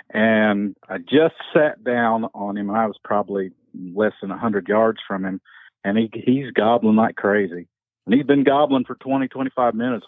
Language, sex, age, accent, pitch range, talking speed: English, male, 50-69, American, 105-140 Hz, 190 wpm